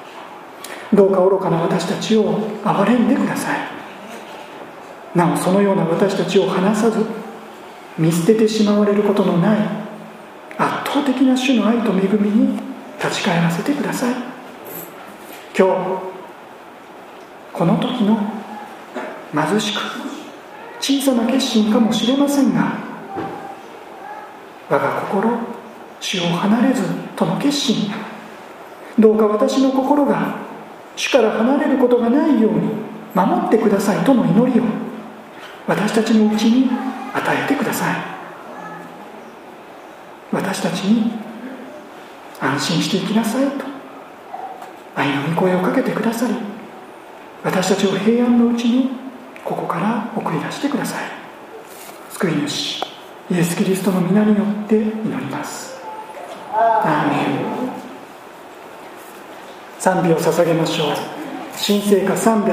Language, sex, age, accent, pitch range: Japanese, male, 40-59, native, 195-250 Hz